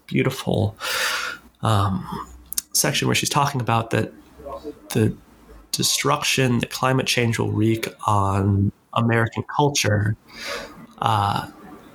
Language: English